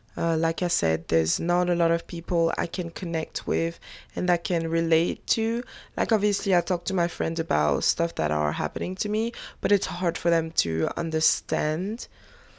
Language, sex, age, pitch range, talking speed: English, female, 20-39, 145-210 Hz, 190 wpm